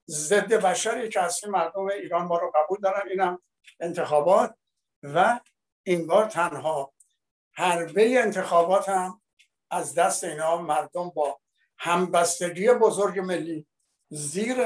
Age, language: 60-79, Persian